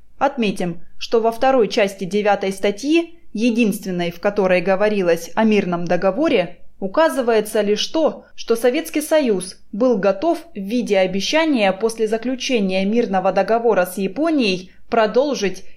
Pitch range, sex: 195-265 Hz, female